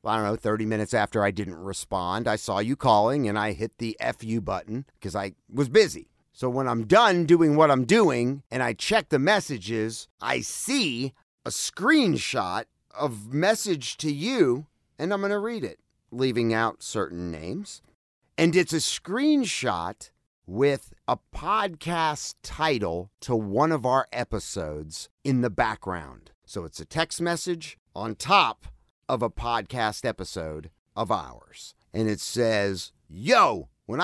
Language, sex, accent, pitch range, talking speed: English, male, American, 105-165 Hz, 155 wpm